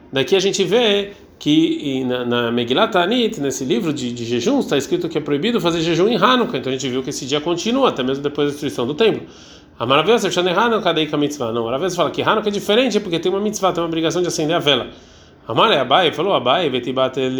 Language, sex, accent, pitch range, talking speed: Portuguese, male, Brazilian, 135-190 Hz, 240 wpm